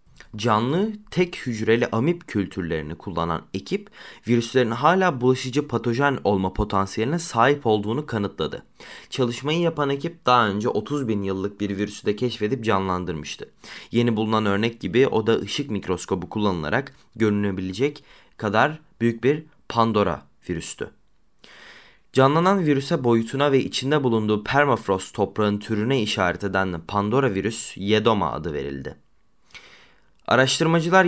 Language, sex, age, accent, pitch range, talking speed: Turkish, male, 20-39, native, 100-135 Hz, 120 wpm